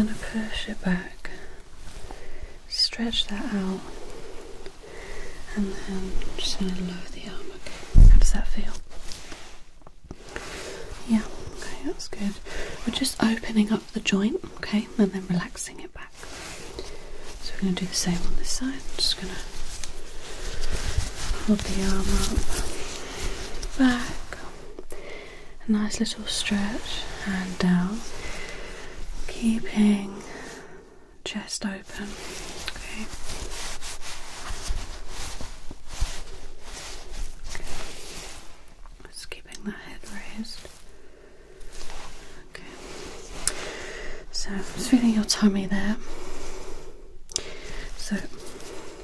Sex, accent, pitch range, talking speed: female, British, 195-235 Hz, 90 wpm